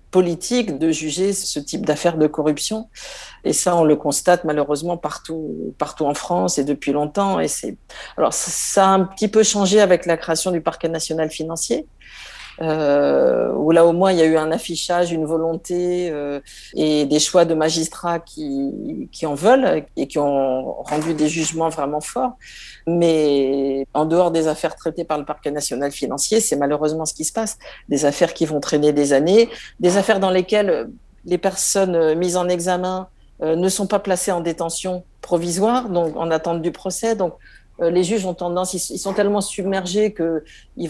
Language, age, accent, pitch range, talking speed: French, 50-69, French, 150-185 Hz, 180 wpm